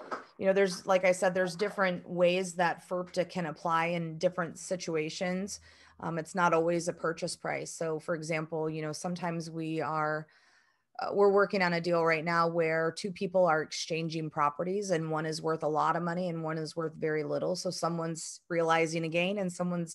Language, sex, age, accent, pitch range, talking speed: English, female, 30-49, American, 155-180 Hz, 200 wpm